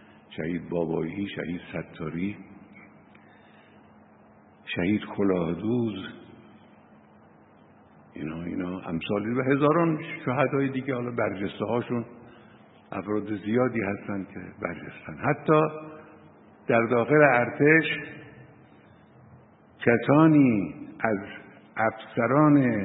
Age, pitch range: 60-79, 100-135 Hz